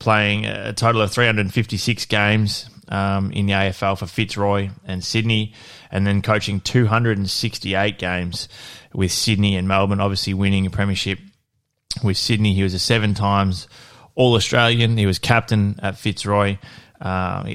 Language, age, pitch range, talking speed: English, 20-39, 95-105 Hz, 135 wpm